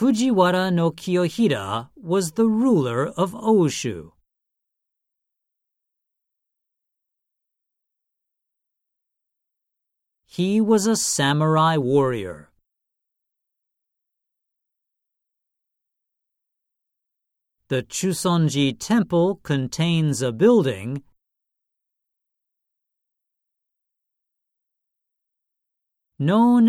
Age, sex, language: 50-69, male, Japanese